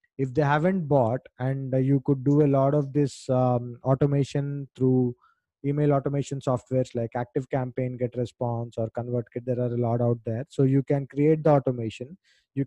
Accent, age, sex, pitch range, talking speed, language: Indian, 20-39, male, 130-145 Hz, 175 wpm, English